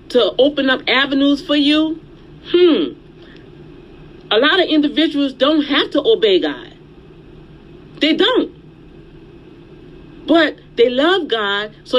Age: 40-59